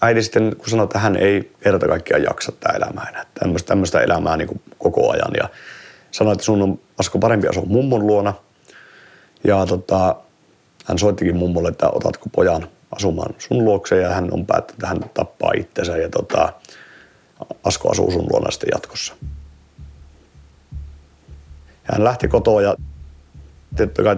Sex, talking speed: male, 140 wpm